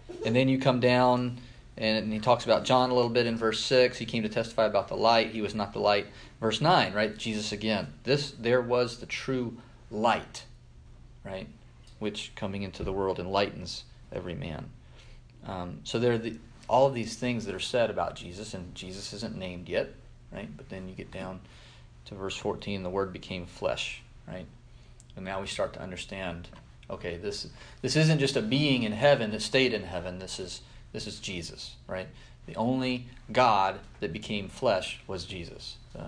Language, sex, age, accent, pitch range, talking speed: English, male, 30-49, American, 95-125 Hz, 190 wpm